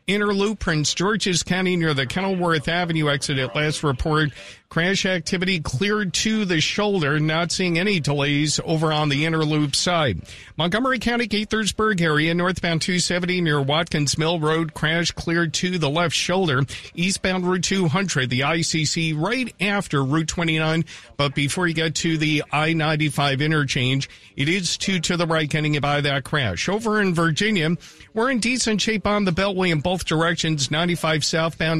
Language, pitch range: English, 150-185 Hz